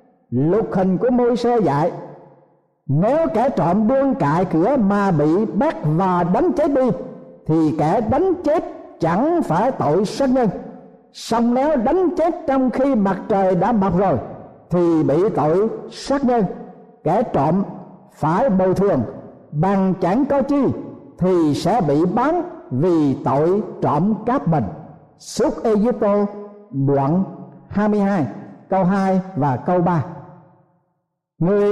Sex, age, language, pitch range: male, 60-79, Vietnamese, 175-255 Hz